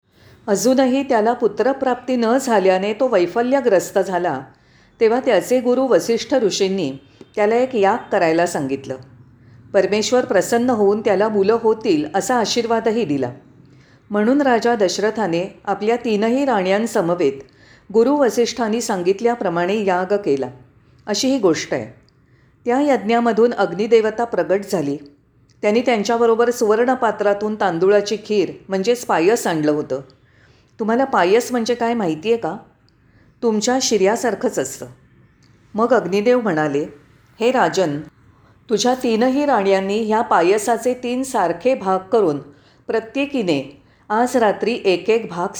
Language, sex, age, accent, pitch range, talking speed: Marathi, female, 40-59, native, 165-235 Hz, 115 wpm